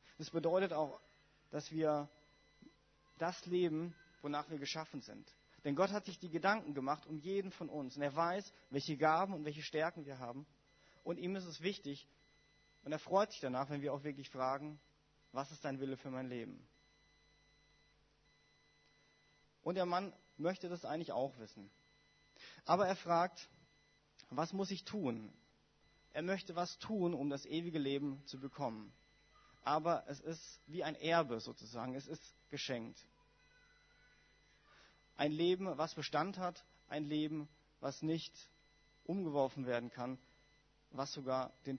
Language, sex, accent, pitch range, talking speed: German, male, German, 140-170 Hz, 150 wpm